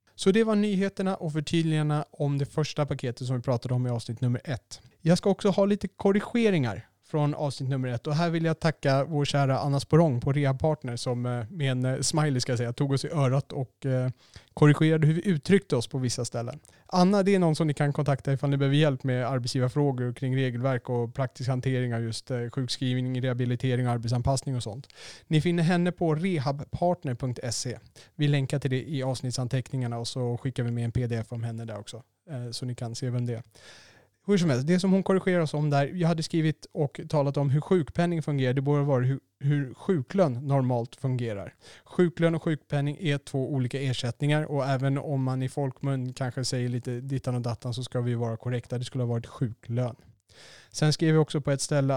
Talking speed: 200 wpm